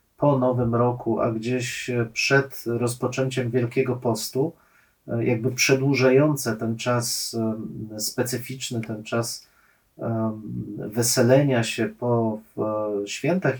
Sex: male